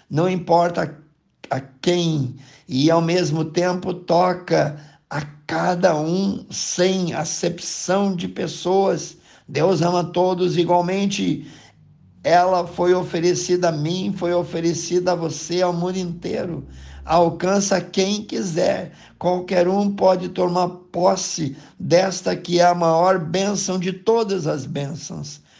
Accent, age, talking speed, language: Brazilian, 50-69, 115 wpm, Portuguese